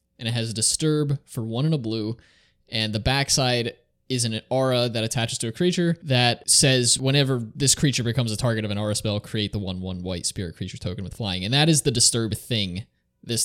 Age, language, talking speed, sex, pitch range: 20-39, English, 230 wpm, male, 105-130 Hz